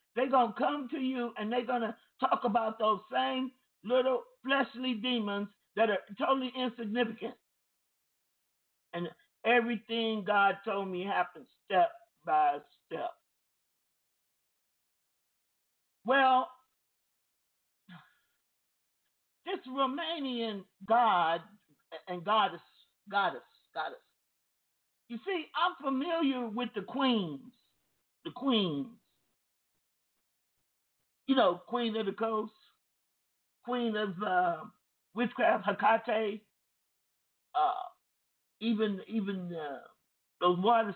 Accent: American